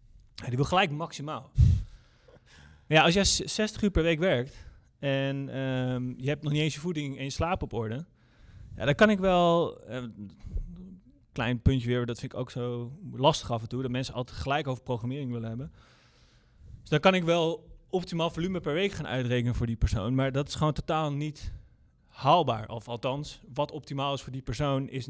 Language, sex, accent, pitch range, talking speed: Dutch, male, Dutch, 120-150 Hz, 200 wpm